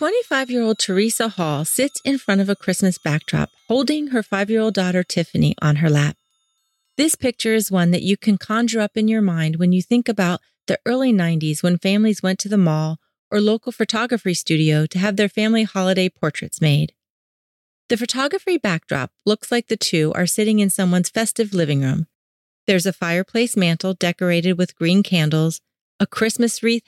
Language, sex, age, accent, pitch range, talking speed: English, female, 40-59, American, 170-220 Hz, 175 wpm